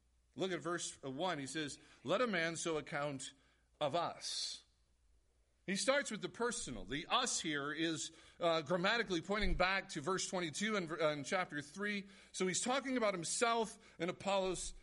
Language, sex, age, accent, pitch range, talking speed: English, male, 50-69, American, 135-210 Hz, 160 wpm